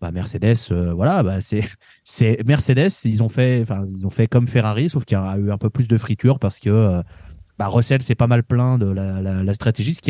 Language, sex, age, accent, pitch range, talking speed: French, male, 20-39, French, 100-130 Hz, 255 wpm